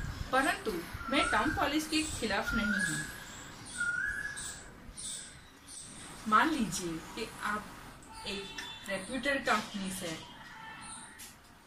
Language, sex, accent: Hindi, female, native